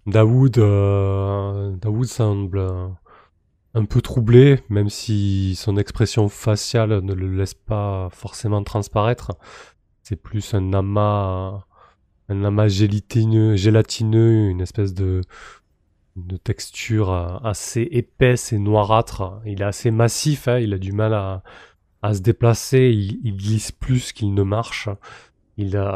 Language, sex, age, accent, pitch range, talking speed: French, male, 20-39, French, 95-110 Hz, 125 wpm